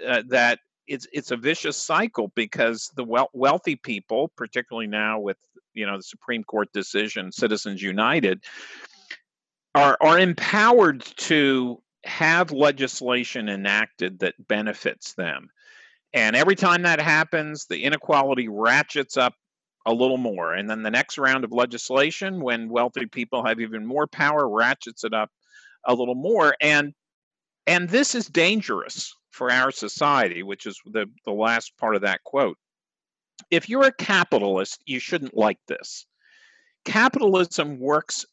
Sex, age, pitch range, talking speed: male, 50-69, 110-165 Hz, 145 wpm